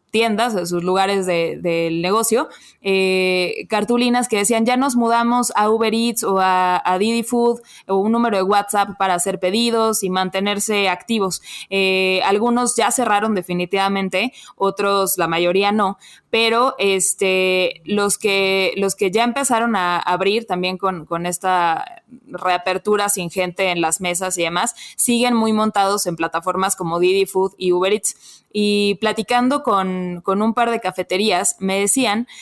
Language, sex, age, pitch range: Spanish, female, 20-39, 185-220 Hz